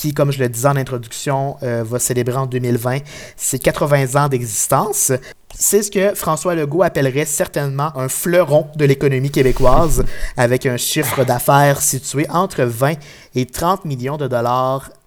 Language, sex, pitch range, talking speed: French, male, 125-155 Hz, 160 wpm